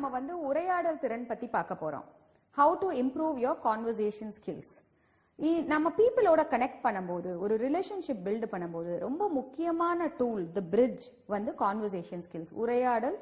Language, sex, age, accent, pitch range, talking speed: English, female, 40-59, Indian, 200-290 Hz, 130 wpm